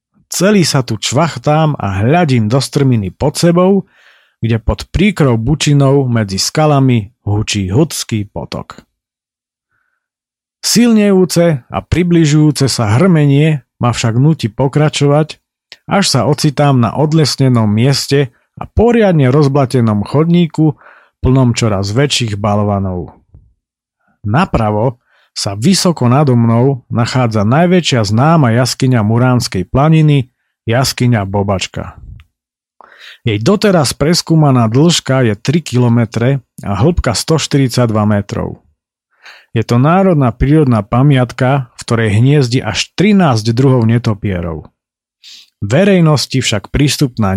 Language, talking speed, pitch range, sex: Slovak, 105 wpm, 115-150 Hz, male